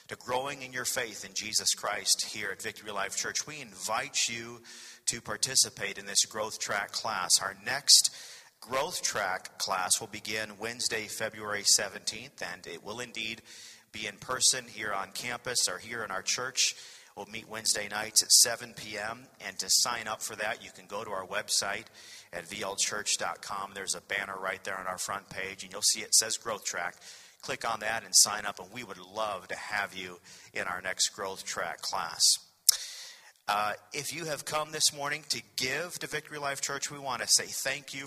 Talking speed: 195 wpm